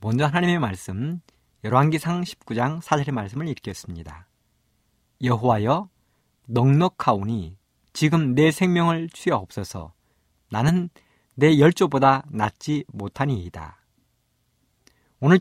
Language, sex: Korean, male